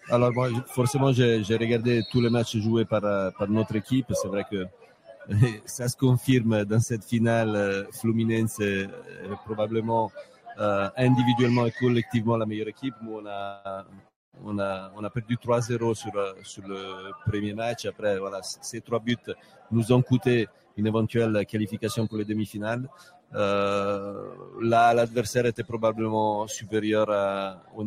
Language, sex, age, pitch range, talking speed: French, male, 40-59, 100-115 Hz, 155 wpm